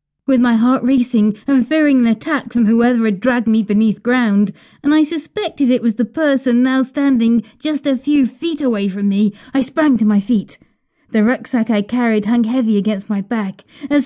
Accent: British